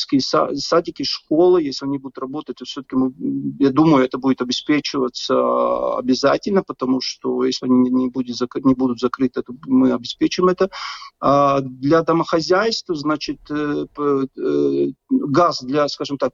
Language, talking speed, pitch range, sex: Russian, 130 wpm, 130-190 Hz, male